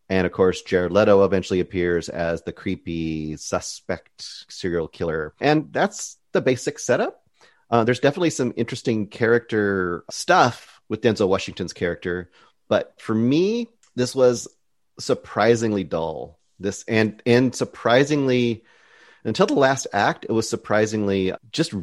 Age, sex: 30-49, male